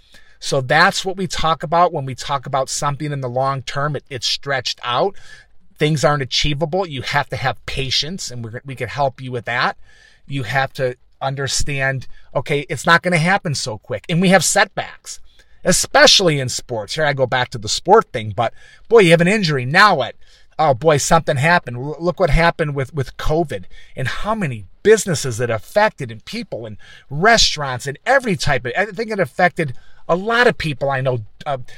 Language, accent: English, American